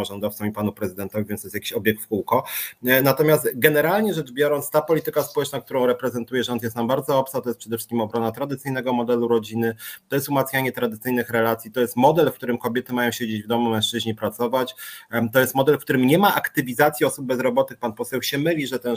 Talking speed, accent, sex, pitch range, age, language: 210 wpm, native, male, 115-140 Hz, 30-49, Polish